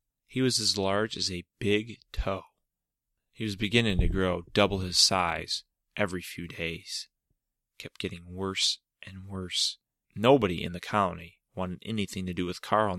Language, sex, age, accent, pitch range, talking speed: English, male, 30-49, American, 90-110 Hz, 160 wpm